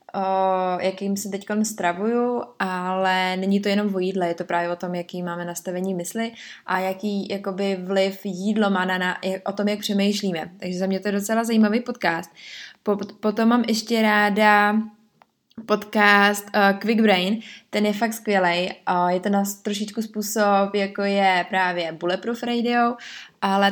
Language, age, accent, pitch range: Czech, 20-39, native, 185-210 Hz